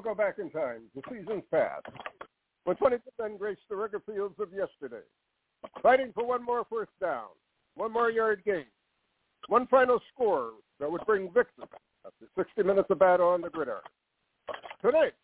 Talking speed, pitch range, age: 165 wpm, 175-295 Hz, 60-79